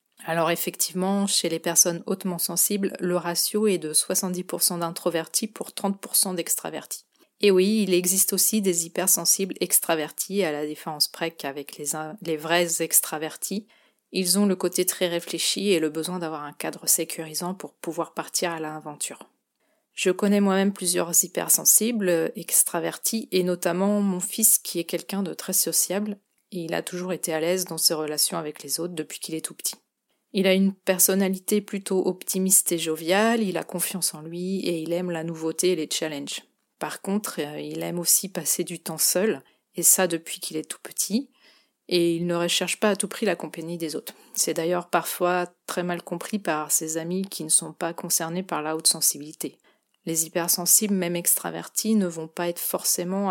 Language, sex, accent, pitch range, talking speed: French, female, French, 165-190 Hz, 180 wpm